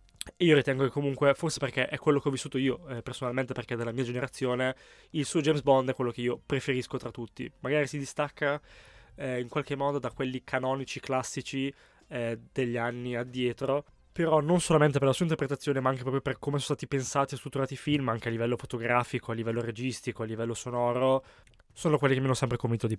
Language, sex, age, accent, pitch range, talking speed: Italian, male, 20-39, native, 125-150 Hz, 215 wpm